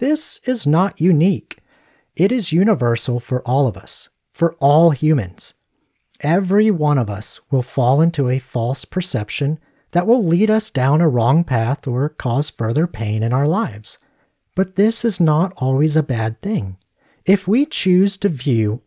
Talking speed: 165 wpm